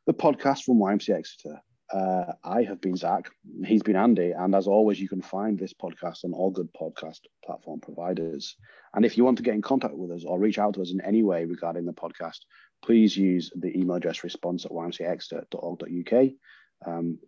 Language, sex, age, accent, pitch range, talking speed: English, male, 30-49, British, 90-120 Hz, 200 wpm